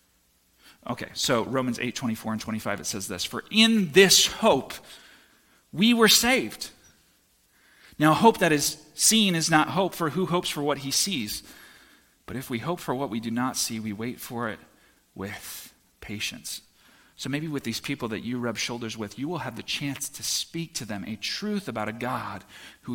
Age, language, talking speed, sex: 40-59, English, 190 wpm, male